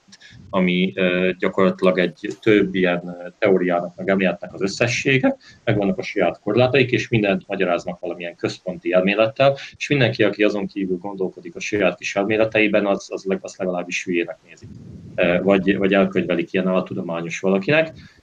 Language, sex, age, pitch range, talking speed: Hungarian, male, 30-49, 90-105 Hz, 135 wpm